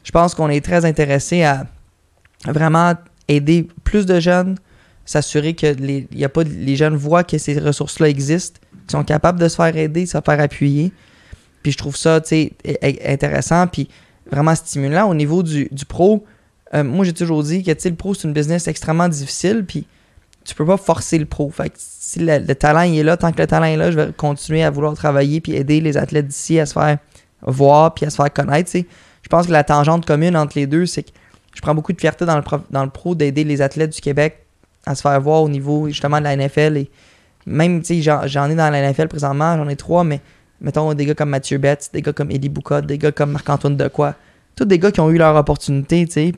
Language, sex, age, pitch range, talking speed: French, male, 20-39, 145-165 Hz, 240 wpm